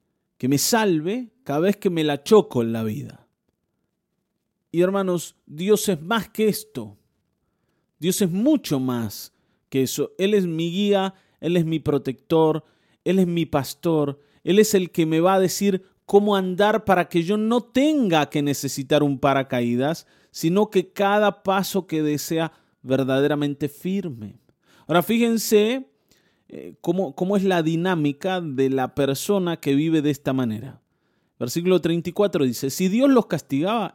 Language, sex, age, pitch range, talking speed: Spanish, male, 30-49, 145-210 Hz, 150 wpm